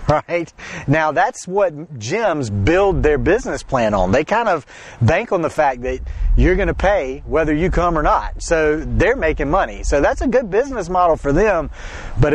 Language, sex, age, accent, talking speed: English, male, 40-59, American, 190 wpm